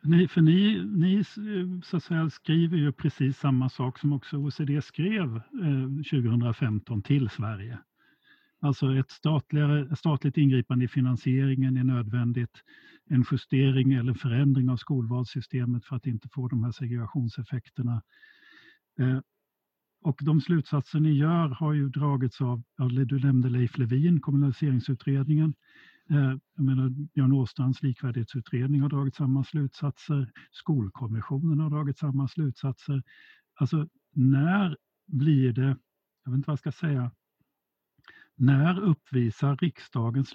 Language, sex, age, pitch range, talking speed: Swedish, male, 50-69, 125-155 Hz, 120 wpm